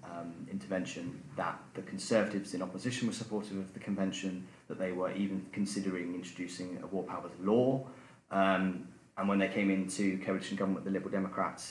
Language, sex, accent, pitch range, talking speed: English, male, British, 90-100 Hz, 175 wpm